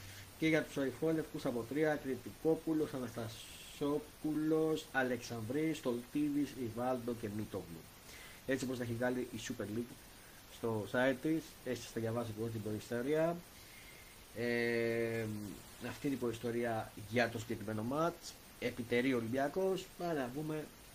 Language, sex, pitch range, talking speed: Greek, male, 110-150 Hz, 125 wpm